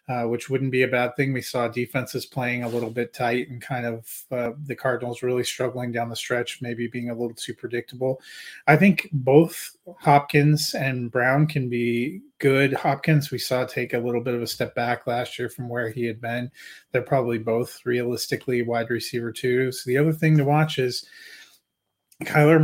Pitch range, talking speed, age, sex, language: 120-135 Hz, 195 wpm, 30-49, male, English